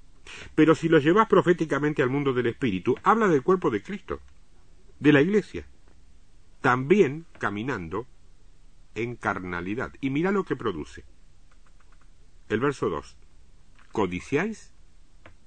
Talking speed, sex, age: 115 wpm, male, 50-69